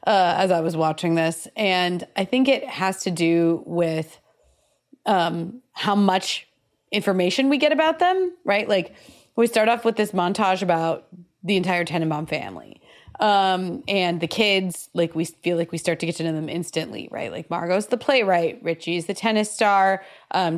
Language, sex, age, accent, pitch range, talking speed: English, female, 30-49, American, 170-220 Hz, 180 wpm